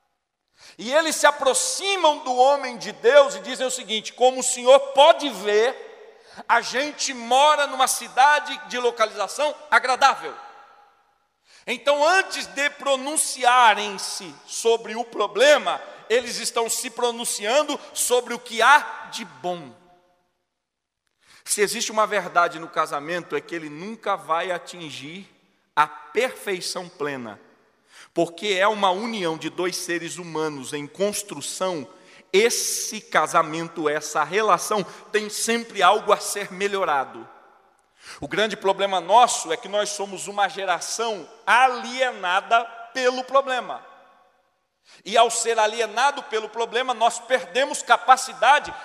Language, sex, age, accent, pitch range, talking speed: Portuguese, male, 40-59, Brazilian, 195-265 Hz, 120 wpm